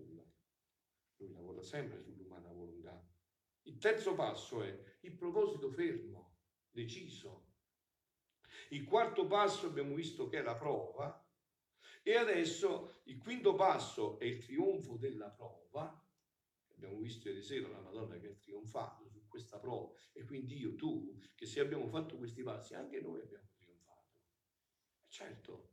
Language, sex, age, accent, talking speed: Italian, male, 50-69, native, 140 wpm